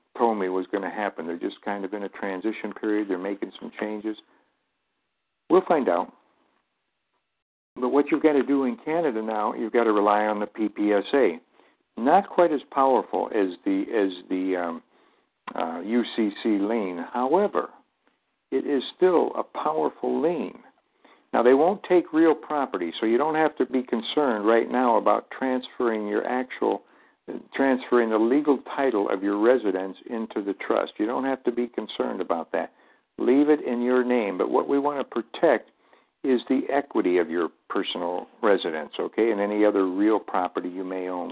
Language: English